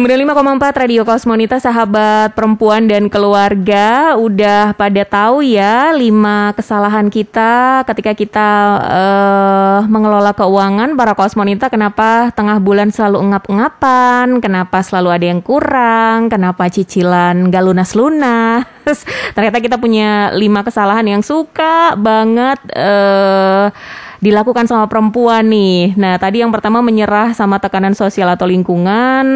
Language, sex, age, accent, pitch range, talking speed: Indonesian, female, 20-39, native, 195-235 Hz, 120 wpm